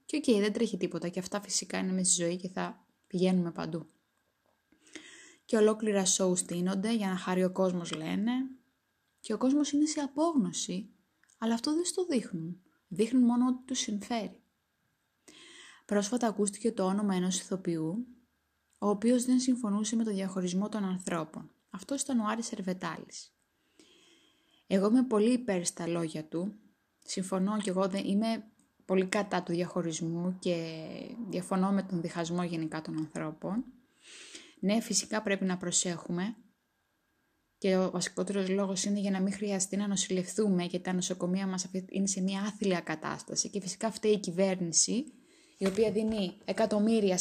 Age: 20-39